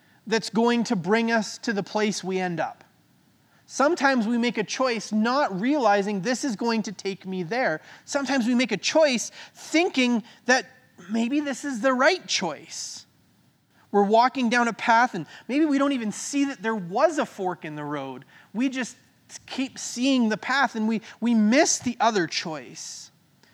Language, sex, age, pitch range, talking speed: English, male, 30-49, 195-255 Hz, 180 wpm